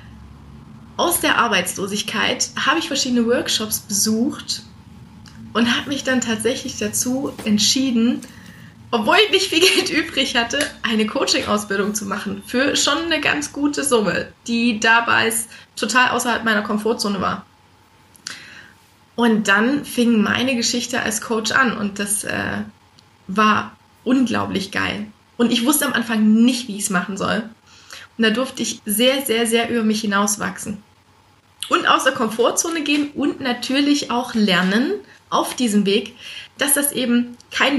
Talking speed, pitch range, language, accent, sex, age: 145 wpm, 210-260 Hz, German, German, female, 20-39